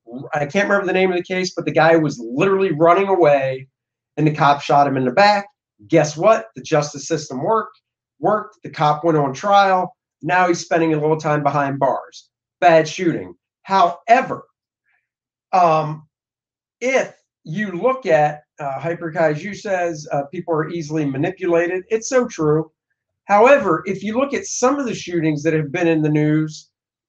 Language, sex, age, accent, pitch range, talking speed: English, male, 50-69, American, 150-210 Hz, 170 wpm